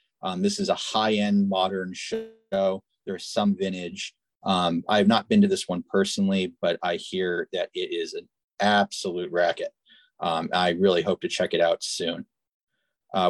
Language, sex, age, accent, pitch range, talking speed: English, male, 30-49, American, 95-135 Hz, 175 wpm